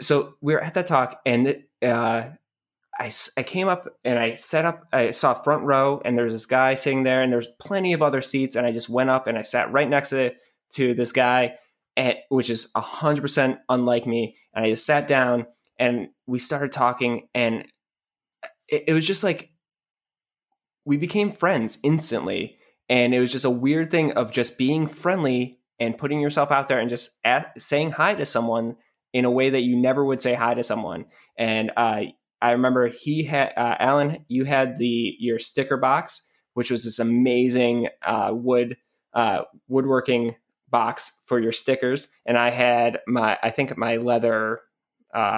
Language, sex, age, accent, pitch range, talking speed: English, male, 20-39, American, 120-145 Hz, 190 wpm